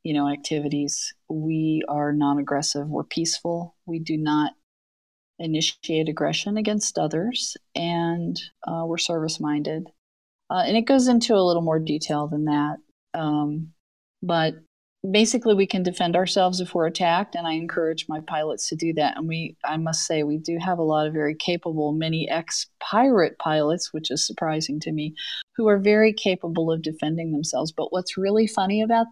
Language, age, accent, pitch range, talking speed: English, 40-59, American, 155-190 Hz, 165 wpm